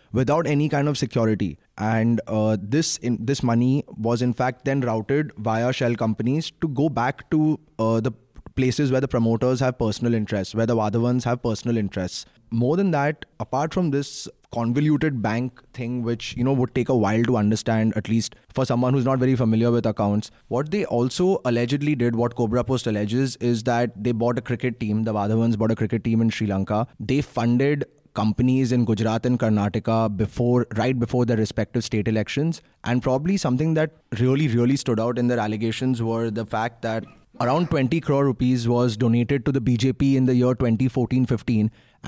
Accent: Indian